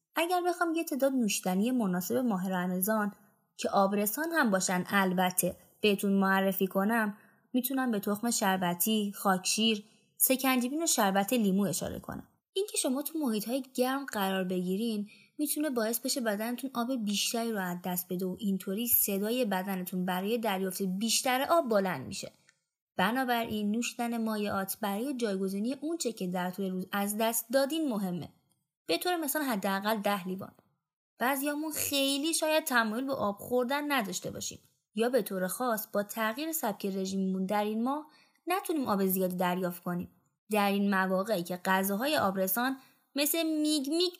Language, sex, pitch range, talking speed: Persian, female, 190-255 Hz, 150 wpm